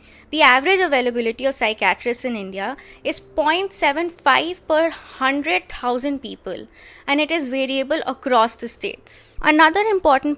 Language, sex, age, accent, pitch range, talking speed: Hindi, female, 20-39, native, 250-315 Hz, 120 wpm